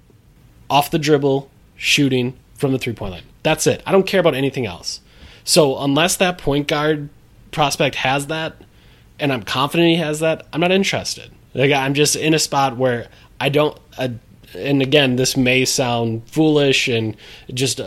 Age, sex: 20-39, male